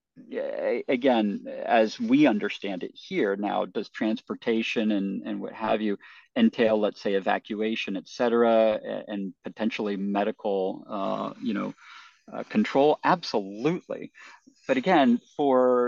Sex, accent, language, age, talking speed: male, American, English, 40-59, 120 wpm